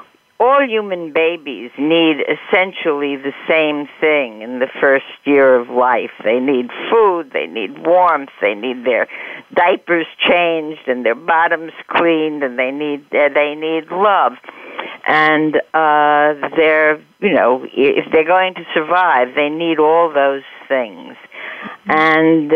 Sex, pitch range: female, 145-175 Hz